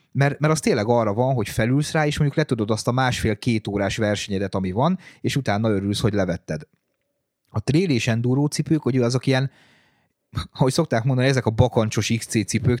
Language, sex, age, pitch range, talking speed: Hungarian, male, 30-49, 105-130 Hz, 165 wpm